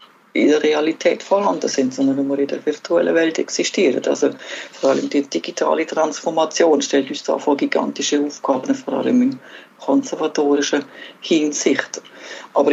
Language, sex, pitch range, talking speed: German, female, 145-195 Hz, 140 wpm